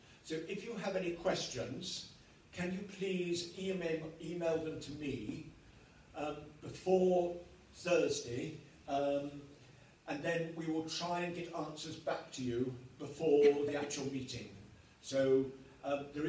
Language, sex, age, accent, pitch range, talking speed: English, male, 50-69, British, 140-170 Hz, 130 wpm